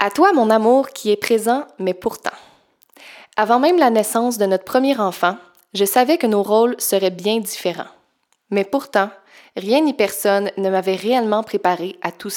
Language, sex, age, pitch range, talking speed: French, female, 20-39, 190-230 Hz, 175 wpm